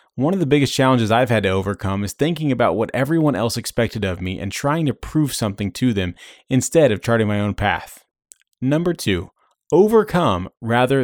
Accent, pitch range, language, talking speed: American, 105-140 Hz, English, 190 wpm